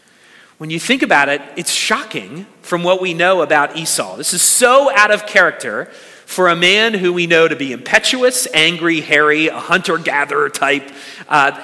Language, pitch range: English, 130-180 Hz